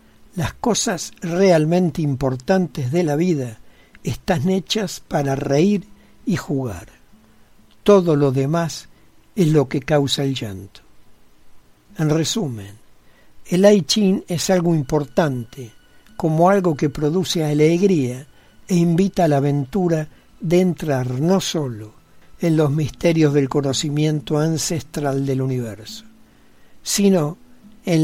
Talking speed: 115 wpm